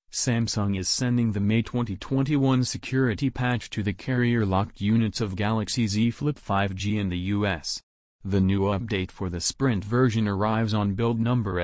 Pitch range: 95-120 Hz